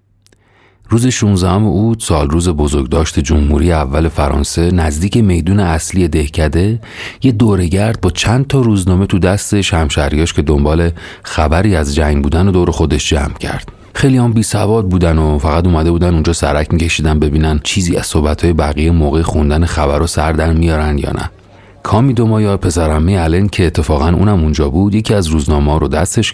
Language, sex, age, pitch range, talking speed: Persian, male, 40-59, 75-100 Hz, 170 wpm